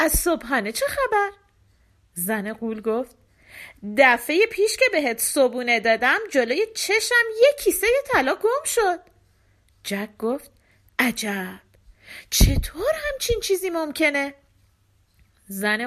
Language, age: Persian, 40-59